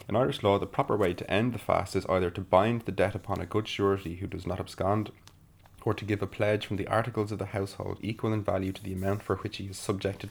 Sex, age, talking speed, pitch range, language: male, 20-39, 270 wpm, 95-105 Hz, English